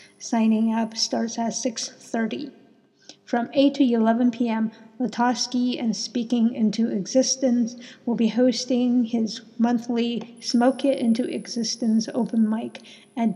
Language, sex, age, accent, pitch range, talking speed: English, female, 50-69, American, 220-245 Hz, 125 wpm